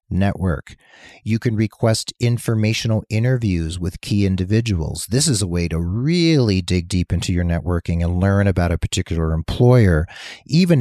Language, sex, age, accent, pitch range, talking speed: English, male, 40-59, American, 90-115 Hz, 150 wpm